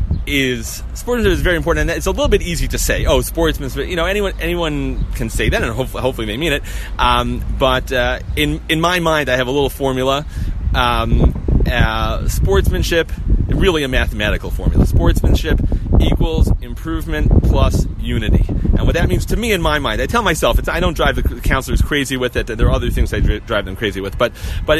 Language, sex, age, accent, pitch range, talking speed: English, male, 30-49, American, 115-160 Hz, 205 wpm